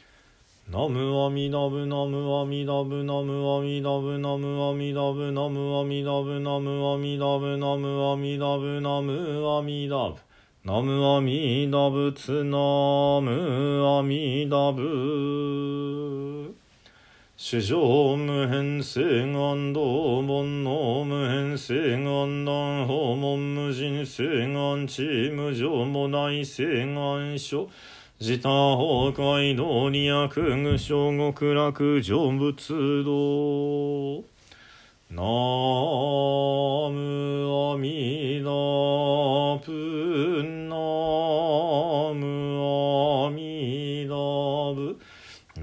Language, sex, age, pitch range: Japanese, male, 40-59, 140-145 Hz